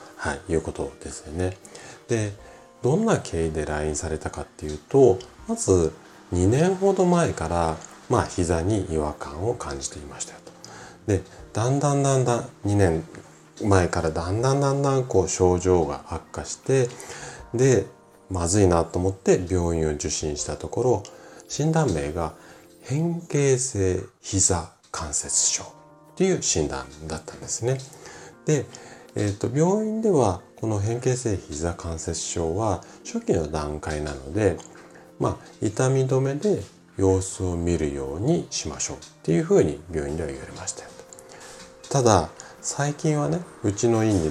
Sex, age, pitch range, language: male, 40-59, 80-135 Hz, Japanese